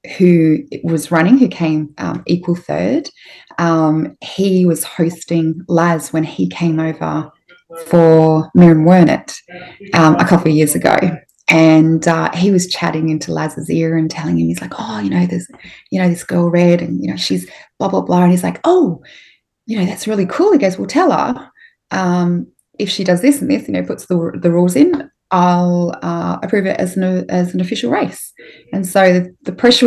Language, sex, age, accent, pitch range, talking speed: English, female, 20-39, Australian, 155-190 Hz, 195 wpm